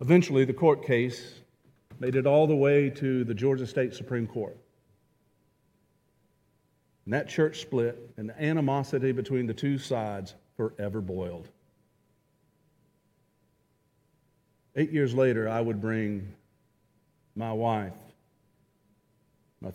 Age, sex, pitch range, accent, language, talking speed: 50-69, male, 110-145 Hz, American, English, 110 wpm